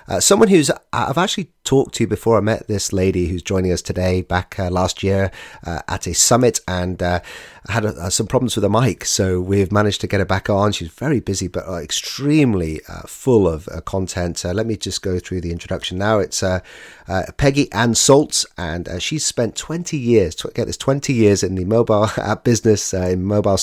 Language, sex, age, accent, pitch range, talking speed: English, male, 30-49, British, 90-110 Hz, 220 wpm